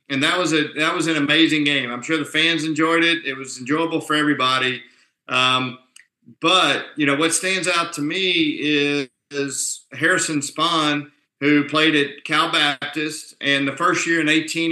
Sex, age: male, 50-69